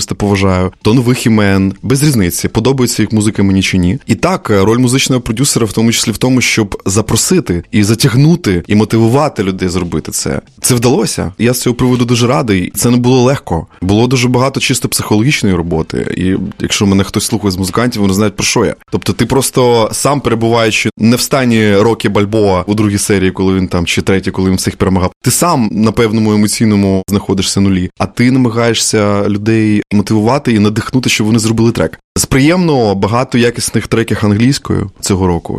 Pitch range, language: 100-120 Hz, Ukrainian